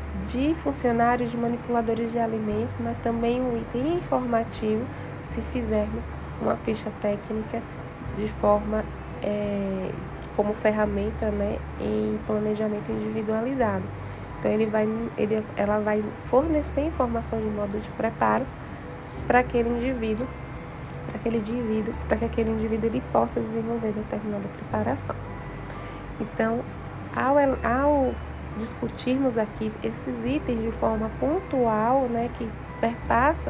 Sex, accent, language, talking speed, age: female, Brazilian, Portuguese, 115 wpm, 10-29